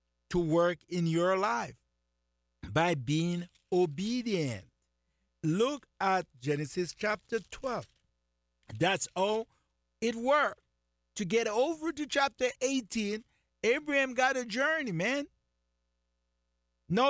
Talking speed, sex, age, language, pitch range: 100 wpm, male, 60-79, English, 135-230 Hz